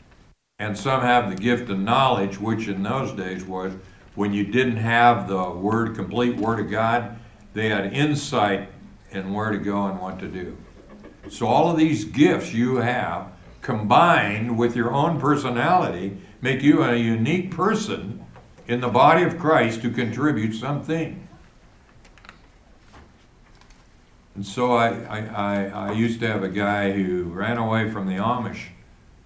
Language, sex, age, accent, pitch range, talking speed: English, male, 60-79, American, 100-120 Hz, 155 wpm